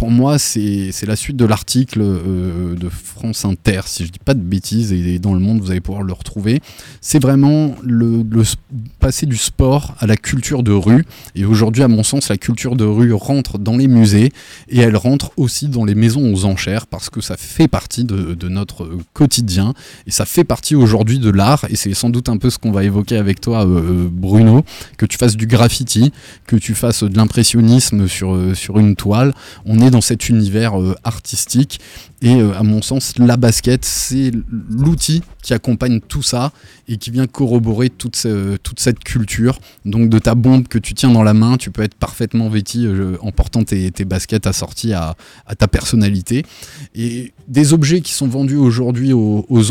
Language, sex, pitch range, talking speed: French, male, 105-125 Hz, 205 wpm